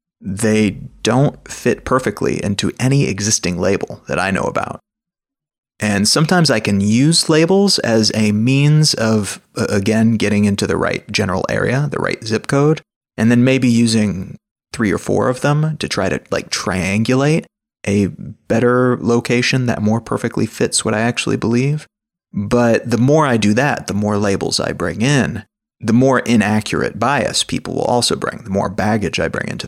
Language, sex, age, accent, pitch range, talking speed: English, male, 30-49, American, 105-135 Hz, 170 wpm